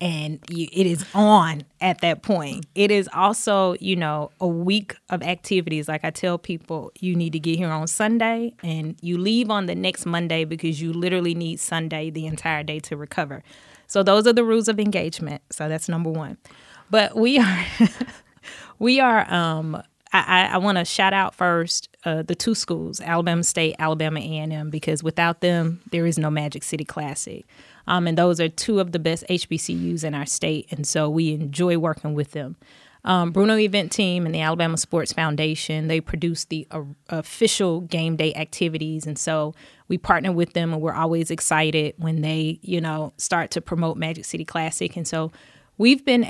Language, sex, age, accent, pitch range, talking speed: English, female, 20-39, American, 160-185 Hz, 185 wpm